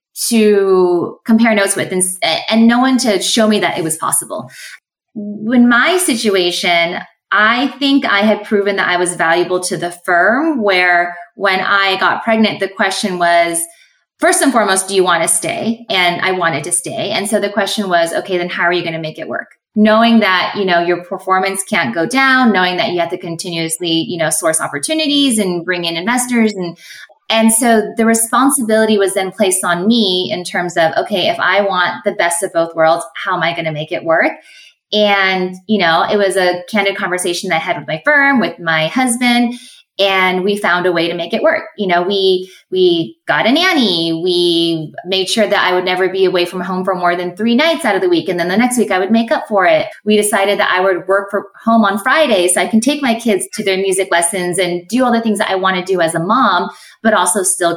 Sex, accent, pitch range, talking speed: female, American, 175-220 Hz, 225 wpm